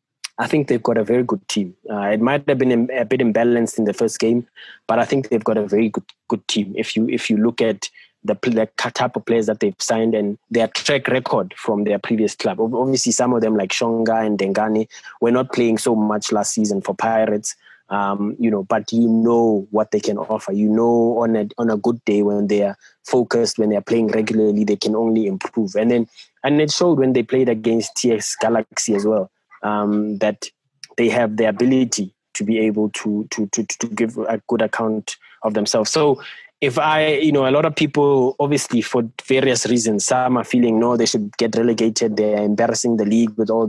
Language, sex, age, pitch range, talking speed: English, male, 20-39, 110-120 Hz, 220 wpm